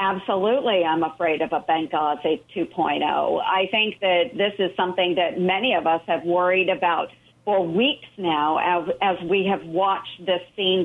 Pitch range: 165-195 Hz